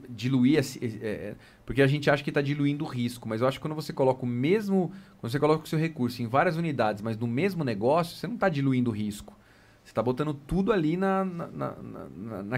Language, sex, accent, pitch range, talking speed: Portuguese, male, Brazilian, 115-150 Hz, 235 wpm